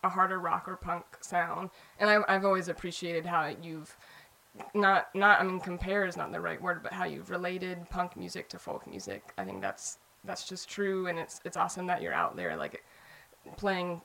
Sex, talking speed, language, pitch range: female, 200 wpm, English, 180-195 Hz